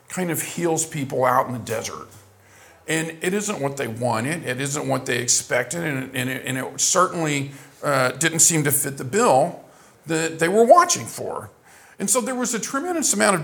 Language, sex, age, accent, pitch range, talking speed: English, male, 50-69, American, 150-220 Hz, 185 wpm